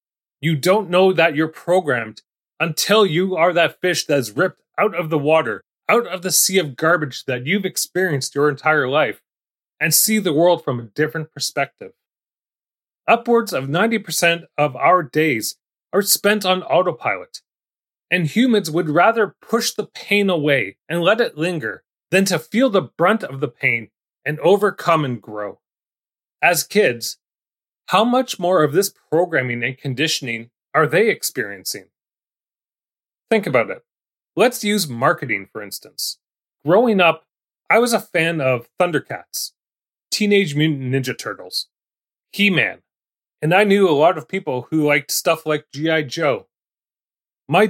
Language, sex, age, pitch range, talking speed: English, male, 30-49, 145-200 Hz, 150 wpm